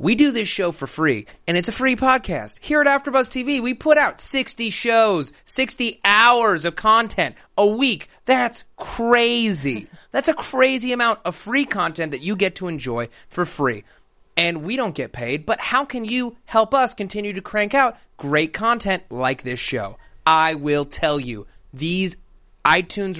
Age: 30-49